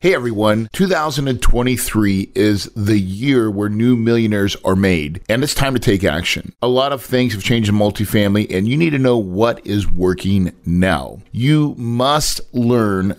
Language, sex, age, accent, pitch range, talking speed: English, male, 40-59, American, 95-125 Hz, 170 wpm